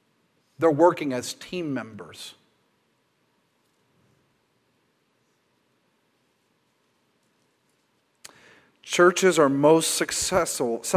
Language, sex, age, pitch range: English, male, 40-59, 140-165 Hz